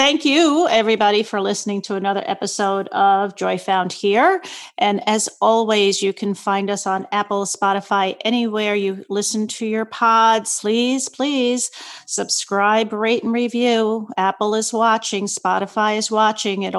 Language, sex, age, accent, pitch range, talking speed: English, female, 40-59, American, 200-235 Hz, 145 wpm